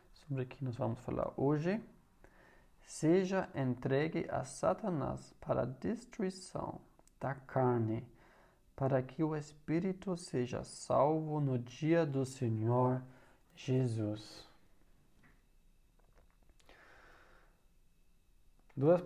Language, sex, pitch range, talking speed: Portuguese, male, 125-170 Hz, 90 wpm